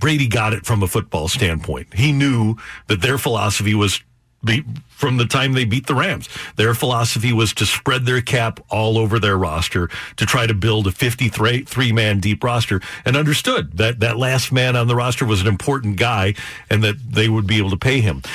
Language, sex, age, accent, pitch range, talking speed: English, male, 50-69, American, 110-140 Hz, 205 wpm